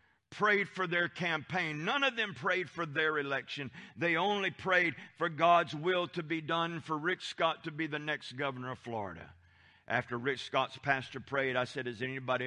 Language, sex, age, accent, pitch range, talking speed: English, male, 50-69, American, 130-180 Hz, 190 wpm